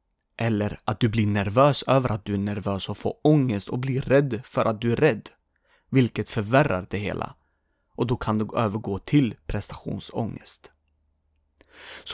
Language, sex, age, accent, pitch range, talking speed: English, male, 30-49, Swedish, 105-145 Hz, 165 wpm